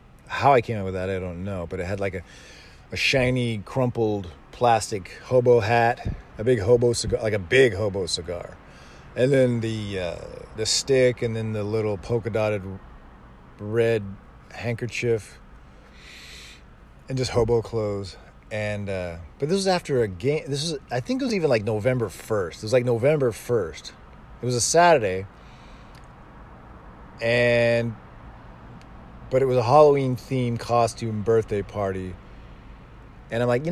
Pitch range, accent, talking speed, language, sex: 95-125 Hz, American, 155 wpm, English, male